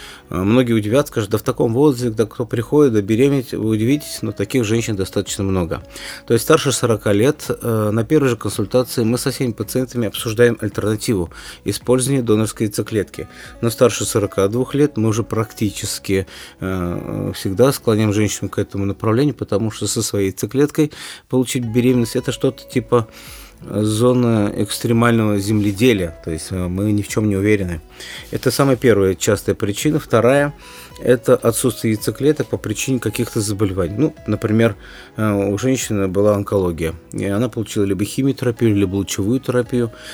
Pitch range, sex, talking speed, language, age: 105-125 Hz, male, 145 wpm, Russian, 30-49